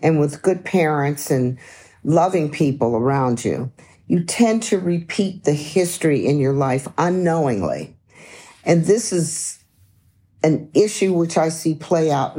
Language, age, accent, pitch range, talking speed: English, 50-69, American, 135-170 Hz, 140 wpm